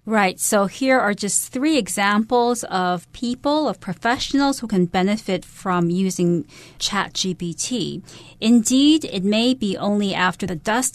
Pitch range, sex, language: 180-230 Hz, female, Chinese